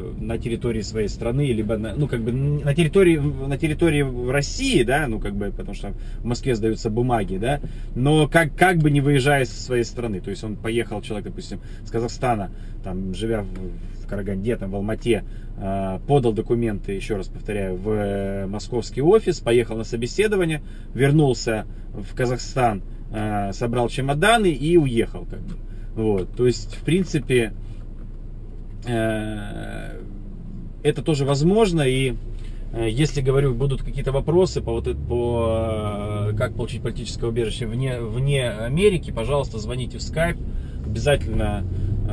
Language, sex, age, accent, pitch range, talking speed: Russian, male, 30-49, native, 105-125 Hz, 140 wpm